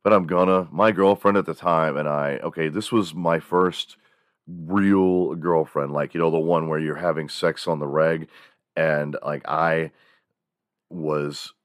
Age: 40-59